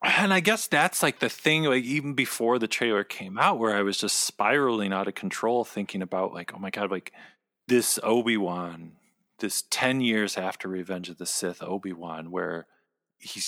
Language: English